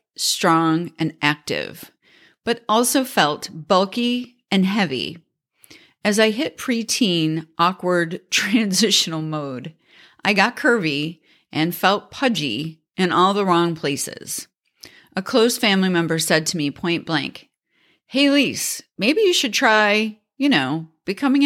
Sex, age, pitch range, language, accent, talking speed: female, 40-59, 155-215 Hz, English, American, 125 wpm